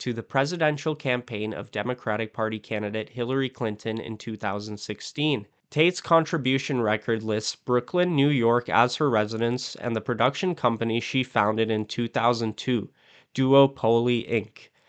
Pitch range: 110-140 Hz